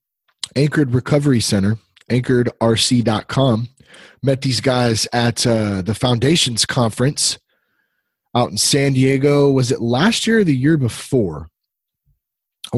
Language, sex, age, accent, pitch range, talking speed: English, male, 30-49, American, 105-140 Hz, 115 wpm